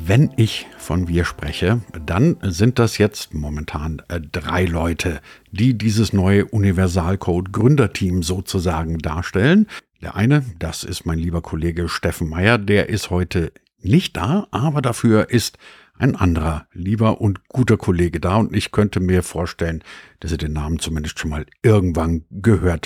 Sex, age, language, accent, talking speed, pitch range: male, 50-69, German, German, 145 wpm, 85-110 Hz